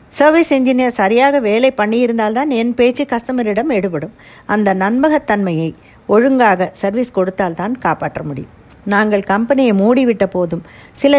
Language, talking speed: Tamil, 115 wpm